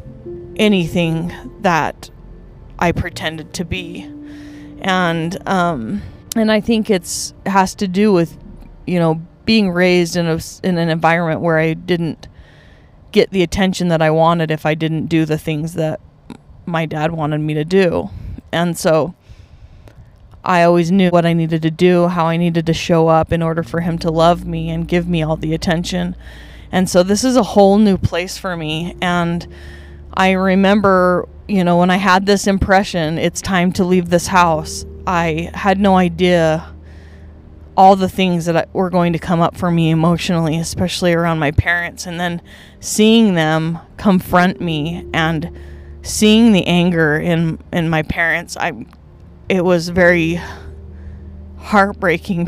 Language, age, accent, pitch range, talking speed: English, 20-39, American, 155-185 Hz, 160 wpm